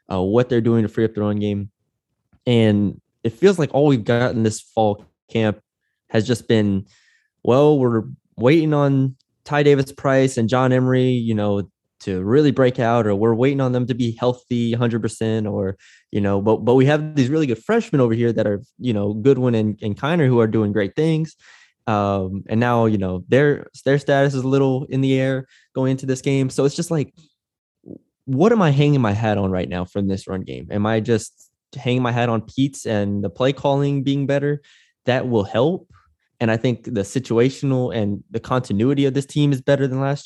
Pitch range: 110-140 Hz